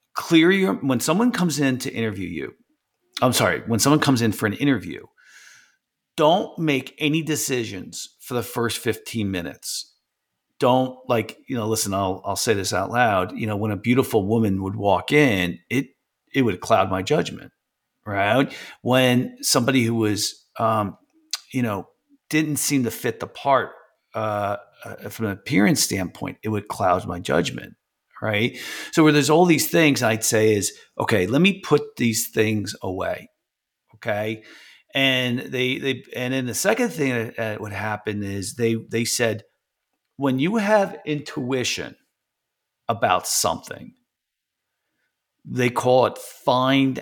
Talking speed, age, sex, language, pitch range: 155 wpm, 40-59, male, English, 110-145 Hz